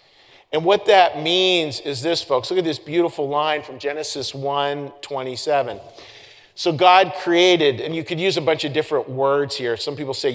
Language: English